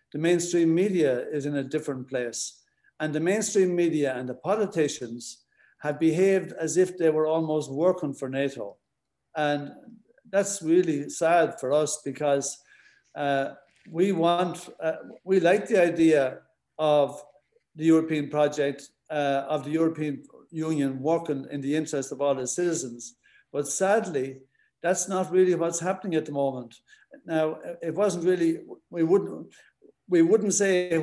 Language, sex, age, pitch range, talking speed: English, male, 60-79, 145-180 Hz, 150 wpm